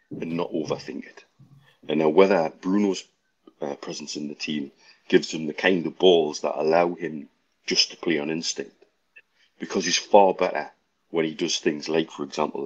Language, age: English, 40-59